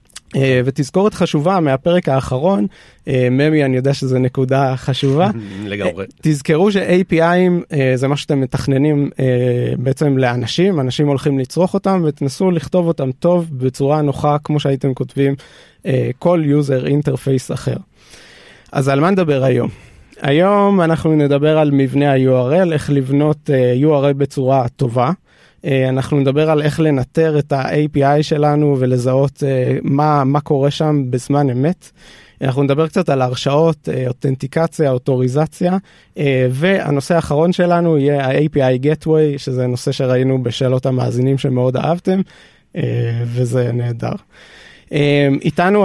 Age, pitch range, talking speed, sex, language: 20-39, 130-160 Hz, 115 wpm, male, Hebrew